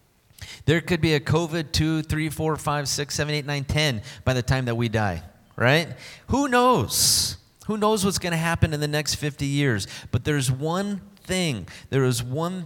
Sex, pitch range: male, 110-150 Hz